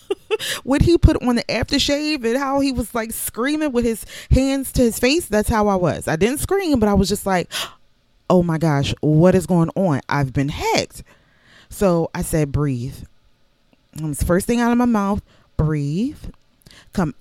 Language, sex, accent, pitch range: English, female, American, 155-210 Hz